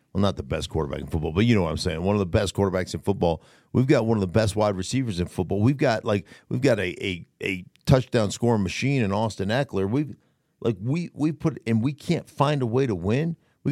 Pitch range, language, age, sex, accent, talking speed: 95-120 Hz, English, 50-69, male, American, 255 wpm